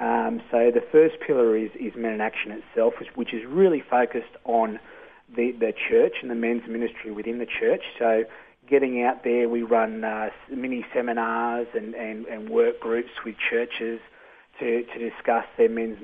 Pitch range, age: 115-130 Hz, 30-49